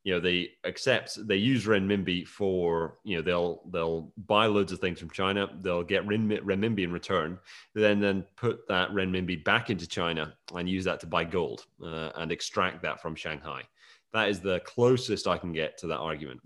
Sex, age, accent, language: male, 30-49, British, English